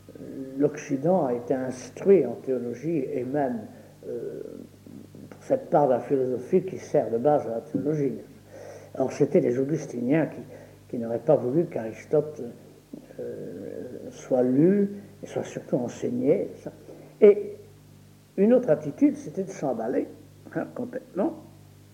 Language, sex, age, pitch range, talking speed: French, male, 60-79, 130-185 Hz, 135 wpm